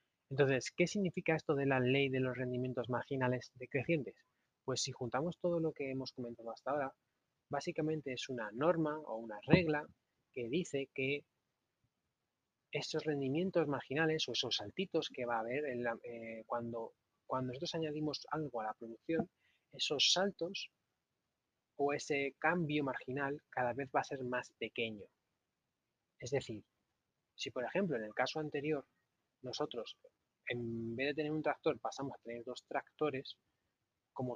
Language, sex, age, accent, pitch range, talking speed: Spanish, male, 20-39, Spanish, 115-150 Hz, 150 wpm